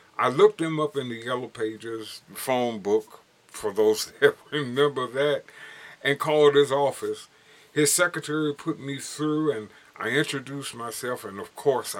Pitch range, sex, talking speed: 120-170 Hz, male, 155 wpm